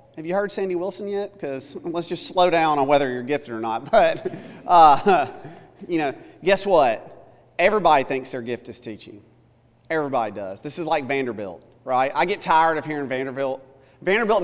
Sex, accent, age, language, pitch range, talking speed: male, American, 40-59, English, 125-170 Hz, 180 wpm